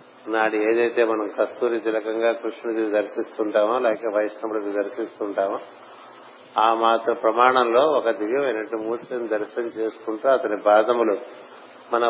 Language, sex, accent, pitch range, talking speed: Telugu, male, native, 110-120 Hz, 105 wpm